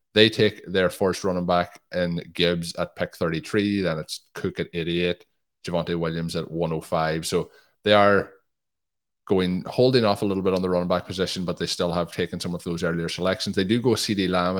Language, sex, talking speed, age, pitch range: English, male, 200 wpm, 20-39, 85-95 Hz